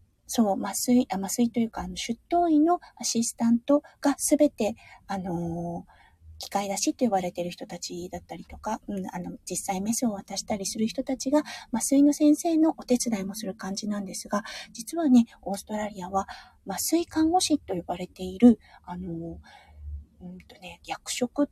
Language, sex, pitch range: Japanese, female, 190-275 Hz